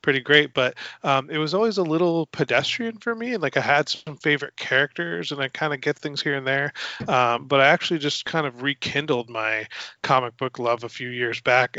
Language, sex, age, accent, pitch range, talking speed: English, male, 20-39, American, 120-140 Hz, 220 wpm